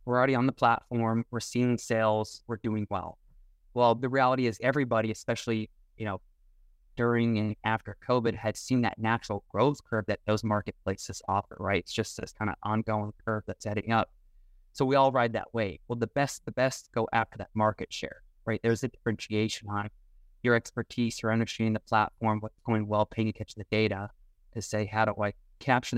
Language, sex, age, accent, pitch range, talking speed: English, male, 20-39, American, 105-120 Hz, 195 wpm